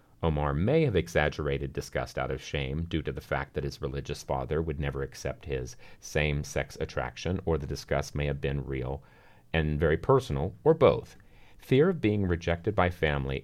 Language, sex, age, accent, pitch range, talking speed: English, male, 30-49, American, 75-95 Hz, 180 wpm